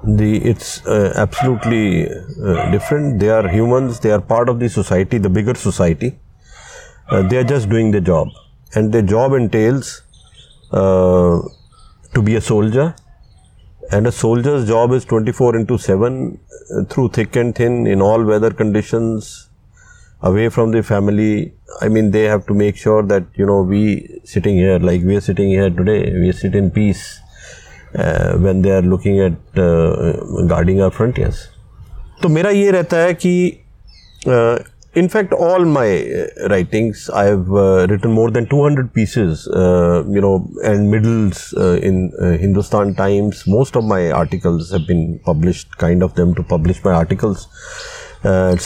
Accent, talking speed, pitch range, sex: native, 160 wpm, 95-115 Hz, male